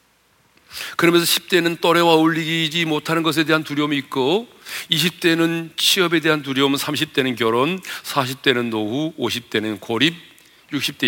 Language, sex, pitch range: Korean, male, 115-165 Hz